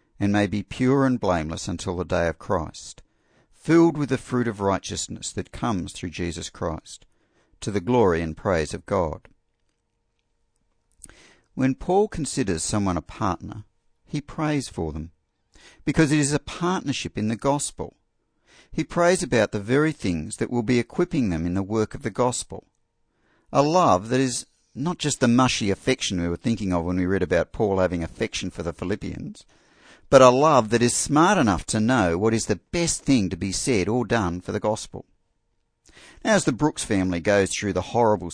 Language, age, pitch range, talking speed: English, 60-79, 95-135 Hz, 185 wpm